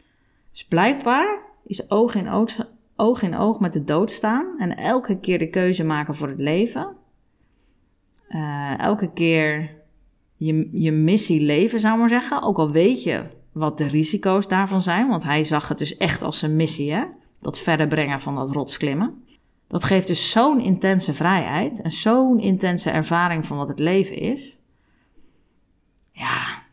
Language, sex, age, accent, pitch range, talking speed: Dutch, female, 30-49, Dutch, 155-200 Hz, 160 wpm